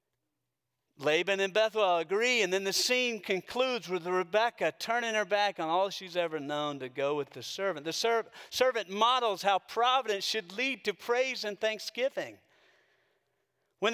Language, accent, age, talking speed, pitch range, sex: English, American, 40-59, 160 wpm, 160-250 Hz, male